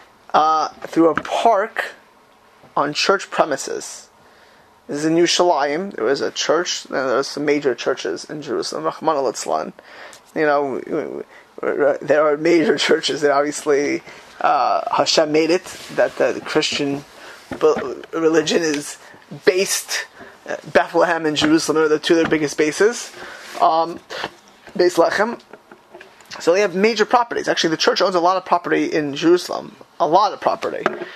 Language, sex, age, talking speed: English, male, 20-39, 145 wpm